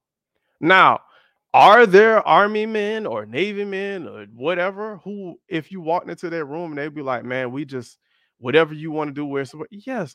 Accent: American